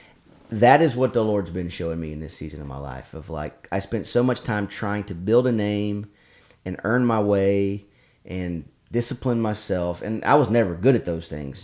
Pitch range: 90-115 Hz